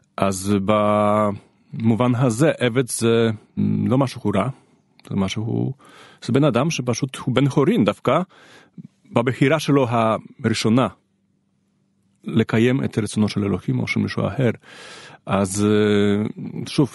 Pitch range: 100-130 Hz